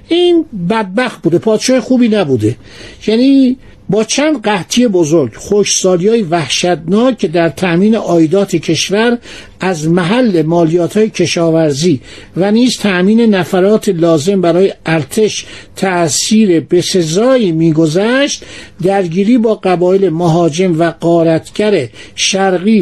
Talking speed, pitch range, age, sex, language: 105 wpm, 170-225 Hz, 60-79, male, Persian